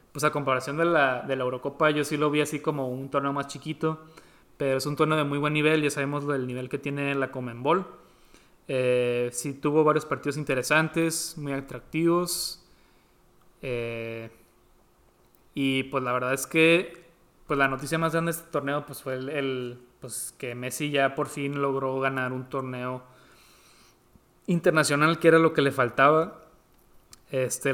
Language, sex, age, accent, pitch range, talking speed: Spanish, male, 20-39, Mexican, 130-155 Hz, 165 wpm